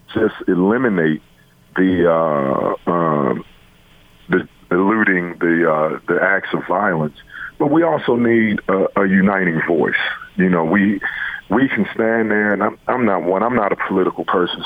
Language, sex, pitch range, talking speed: English, male, 85-110 Hz, 155 wpm